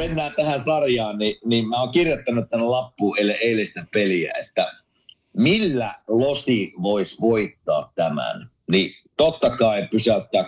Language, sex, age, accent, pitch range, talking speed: Finnish, male, 50-69, native, 105-135 Hz, 130 wpm